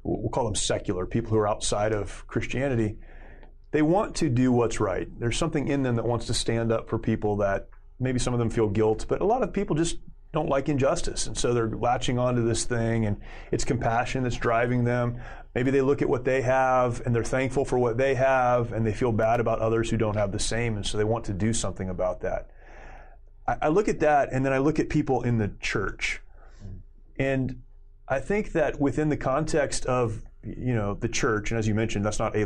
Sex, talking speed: male, 225 wpm